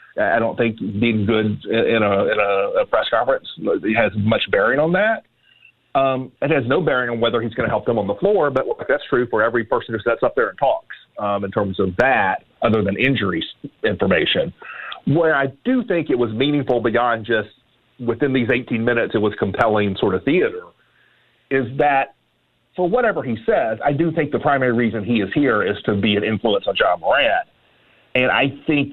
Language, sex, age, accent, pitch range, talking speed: English, male, 40-59, American, 115-160 Hz, 200 wpm